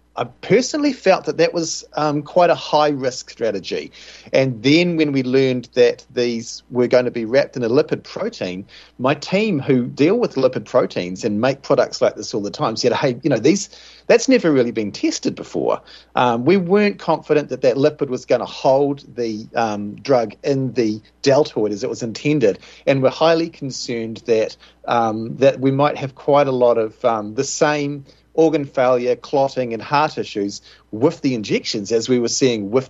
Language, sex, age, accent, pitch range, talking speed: English, male, 40-59, Australian, 120-150 Hz, 195 wpm